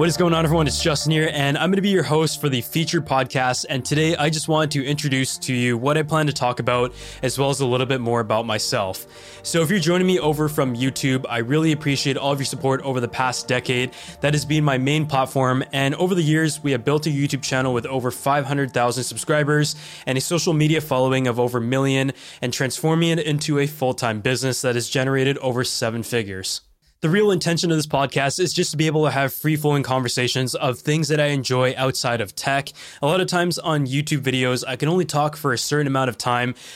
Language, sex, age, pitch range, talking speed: English, male, 20-39, 125-150 Hz, 235 wpm